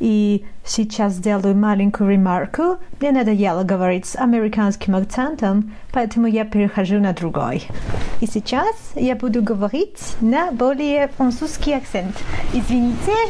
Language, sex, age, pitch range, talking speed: Russian, female, 40-59, 230-295 Hz, 115 wpm